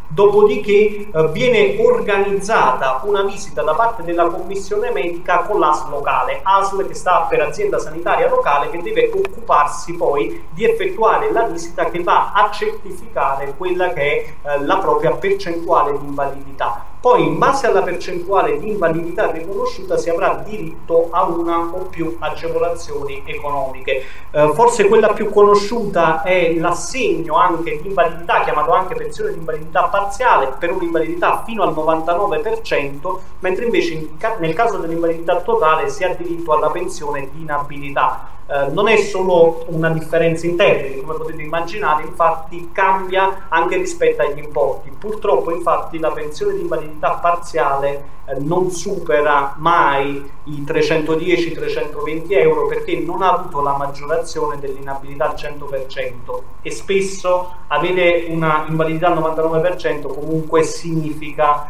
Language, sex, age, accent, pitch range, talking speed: Italian, male, 30-49, native, 155-205 Hz, 135 wpm